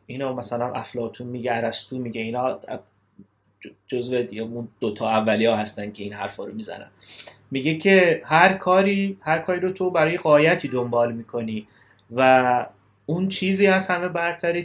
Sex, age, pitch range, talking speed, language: male, 30-49, 120-170 Hz, 150 wpm, Persian